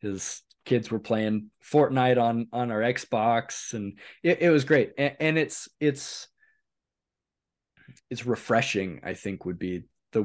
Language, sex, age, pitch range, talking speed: English, male, 20-39, 100-125 Hz, 145 wpm